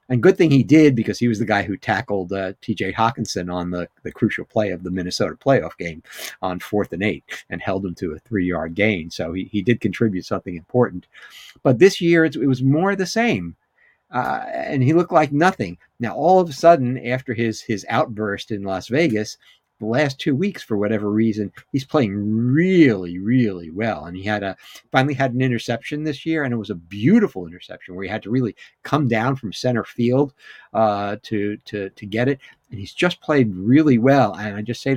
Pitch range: 100-130 Hz